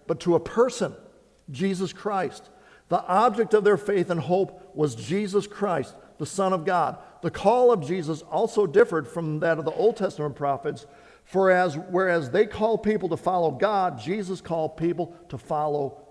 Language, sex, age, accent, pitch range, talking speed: English, male, 50-69, American, 140-200 Hz, 175 wpm